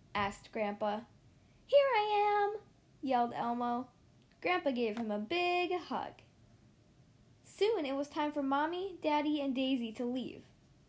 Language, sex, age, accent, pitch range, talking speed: English, female, 10-29, American, 220-350 Hz, 130 wpm